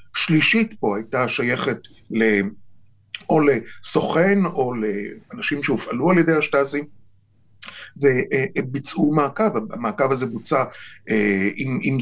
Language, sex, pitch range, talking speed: Hebrew, male, 110-170 Hz, 100 wpm